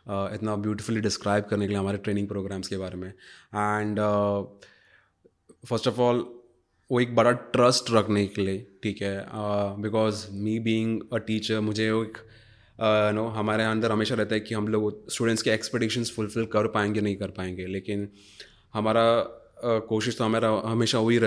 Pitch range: 100-115 Hz